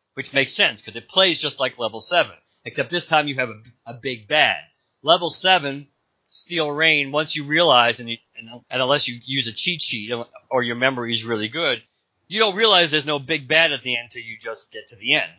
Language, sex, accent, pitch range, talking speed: English, male, American, 120-160 Hz, 230 wpm